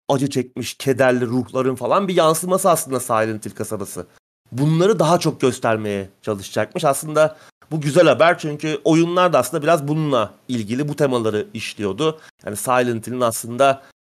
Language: Turkish